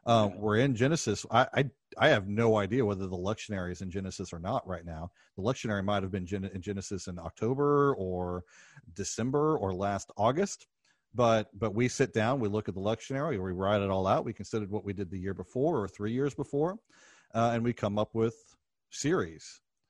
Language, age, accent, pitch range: English, 40-59, American, 95-115 Hz